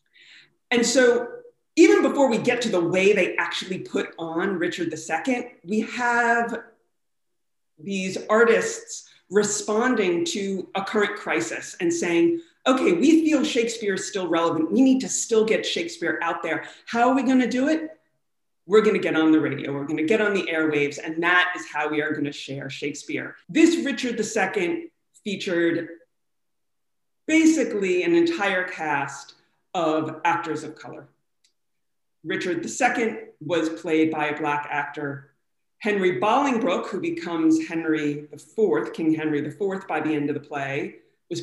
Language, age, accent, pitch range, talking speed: English, 40-59, American, 160-245 Hz, 150 wpm